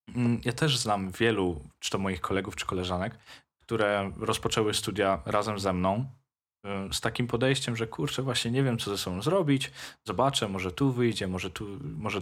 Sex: male